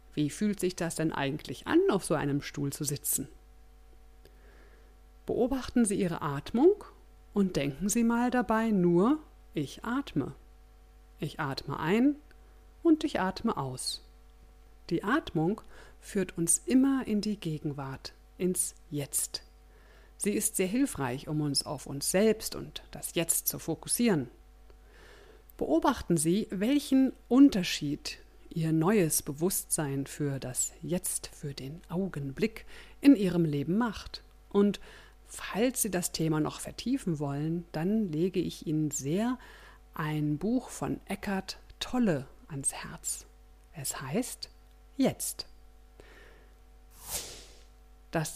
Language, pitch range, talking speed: German, 140-220 Hz, 120 wpm